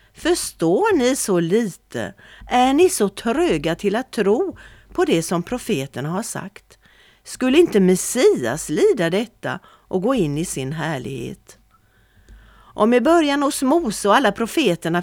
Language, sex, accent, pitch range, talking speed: Swedish, female, native, 170-235 Hz, 145 wpm